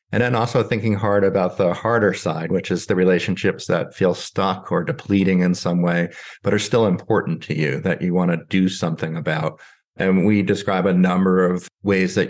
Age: 50-69